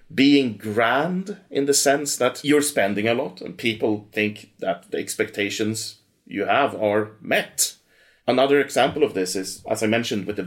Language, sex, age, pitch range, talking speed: English, male, 30-49, 105-145 Hz, 170 wpm